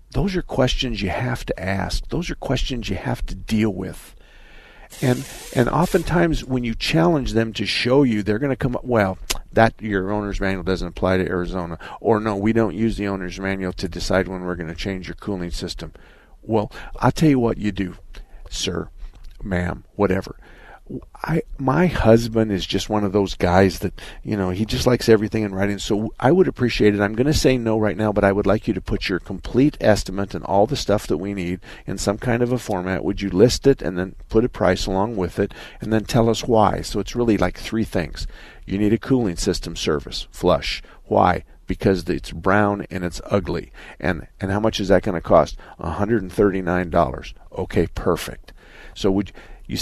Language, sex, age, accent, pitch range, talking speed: English, male, 50-69, American, 90-115 Hz, 205 wpm